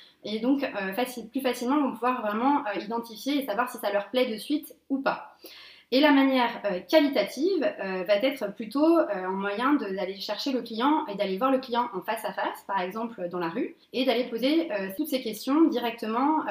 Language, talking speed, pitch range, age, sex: French, 190 wpm, 205-280 Hz, 20-39, female